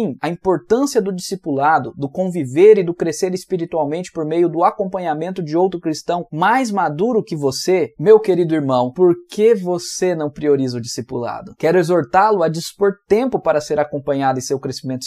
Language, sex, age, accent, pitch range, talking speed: Portuguese, male, 20-39, Brazilian, 145-195 Hz, 165 wpm